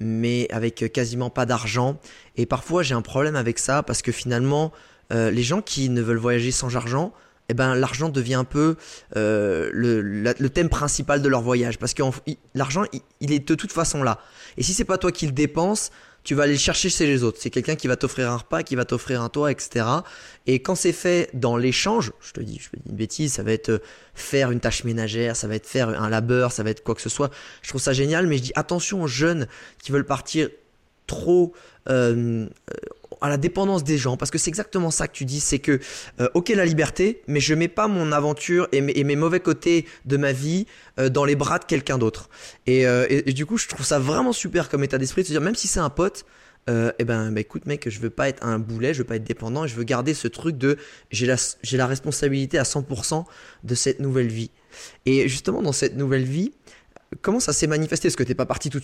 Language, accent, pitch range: French, French, 120-160 Hz